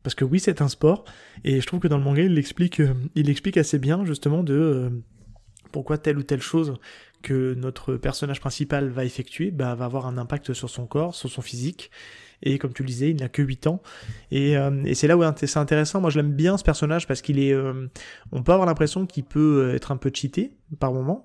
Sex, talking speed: male, 235 wpm